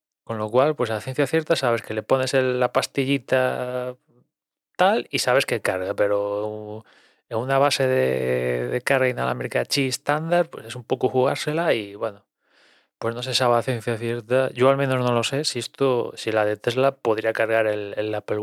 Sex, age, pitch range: male, 20-39, 110-135 Hz